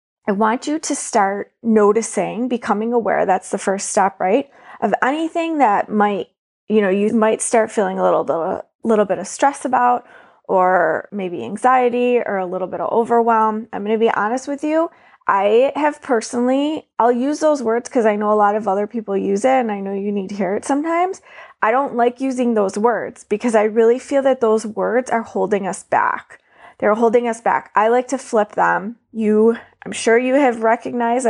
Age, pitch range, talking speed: 20-39, 205-255 Hz, 200 wpm